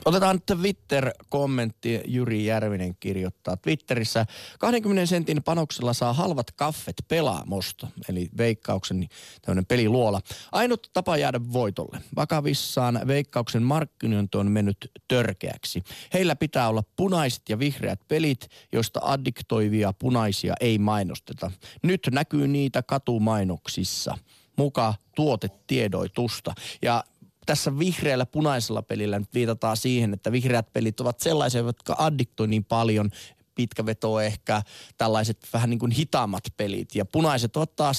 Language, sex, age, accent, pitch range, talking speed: Finnish, male, 30-49, native, 100-130 Hz, 120 wpm